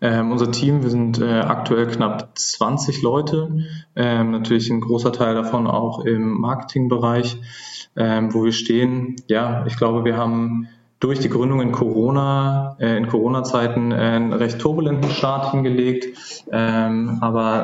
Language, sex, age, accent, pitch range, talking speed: German, male, 20-39, German, 115-135 Hz, 150 wpm